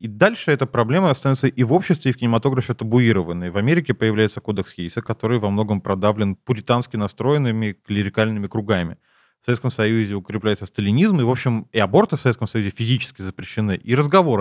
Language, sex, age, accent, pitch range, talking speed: Russian, male, 20-39, native, 110-135 Hz, 175 wpm